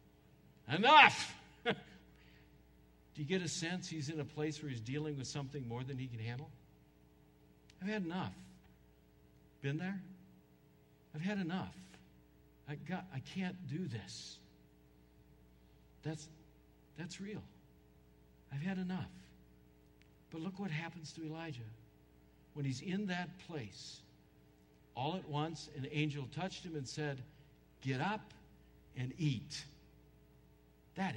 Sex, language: male, English